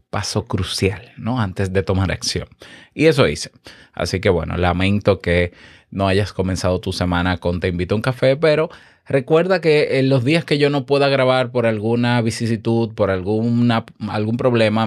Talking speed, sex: 180 wpm, male